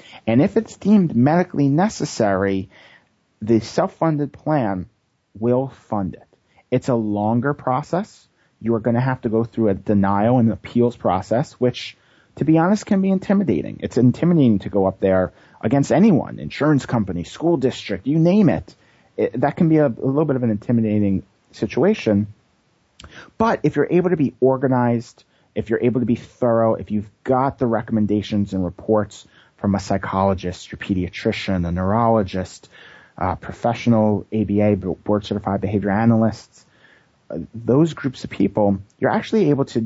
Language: English